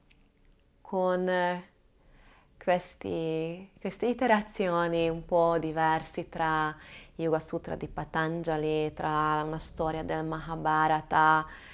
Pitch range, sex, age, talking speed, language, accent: 155-195 Hz, female, 20-39, 85 wpm, Italian, native